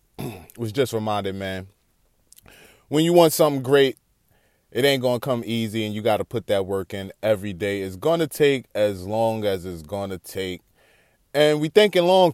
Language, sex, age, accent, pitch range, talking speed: English, male, 20-39, American, 105-135 Hz, 180 wpm